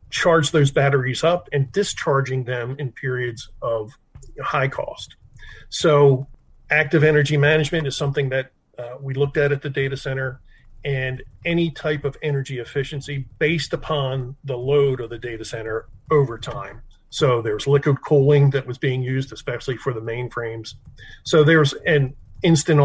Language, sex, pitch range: English, male, 125-145 Hz